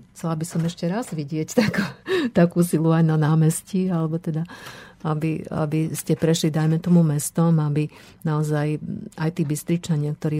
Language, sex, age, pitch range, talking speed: Slovak, female, 50-69, 155-170 Hz, 155 wpm